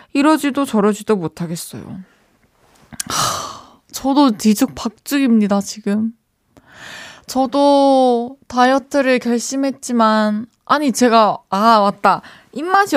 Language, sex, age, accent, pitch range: Korean, female, 20-39, native, 165-235 Hz